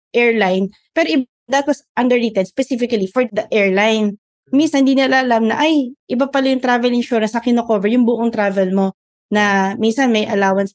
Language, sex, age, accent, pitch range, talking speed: Filipino, female, 20-39, native, 200-255 Hz, 175 wpm